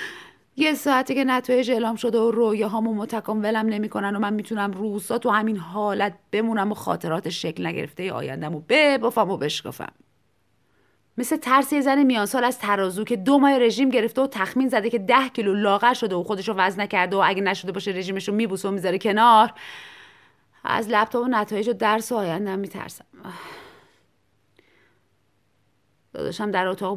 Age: 30-49